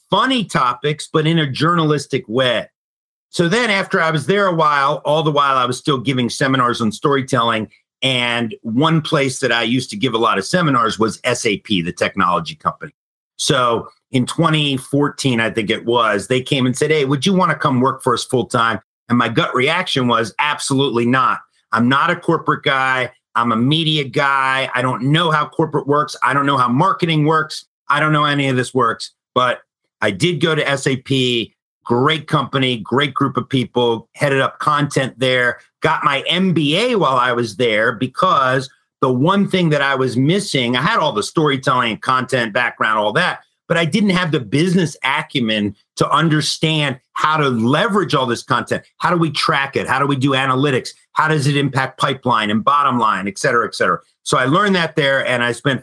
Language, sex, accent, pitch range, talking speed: English, male, American, 125-155 Hz, 200 wpm